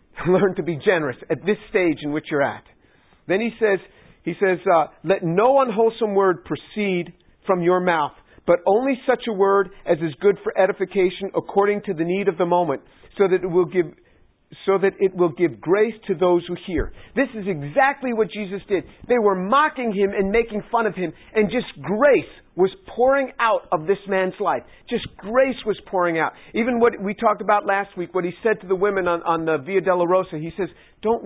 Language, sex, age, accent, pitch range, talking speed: English, male, 50-69, American, 185-235 Hz, 210 wpm